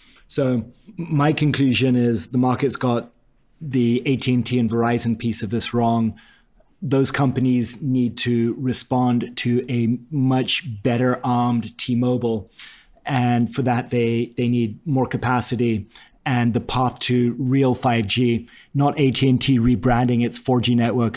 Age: 30-49